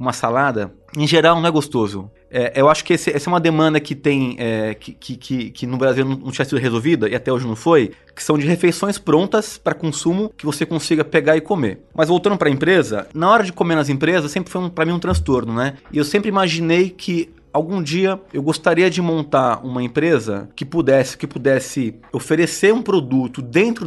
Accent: Brazilian